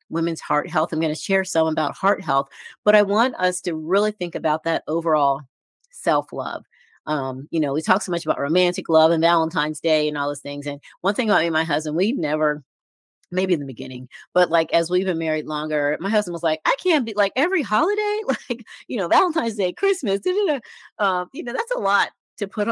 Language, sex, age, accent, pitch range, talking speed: English, female, 40-59, American, 150-185 Hz, 220 wpm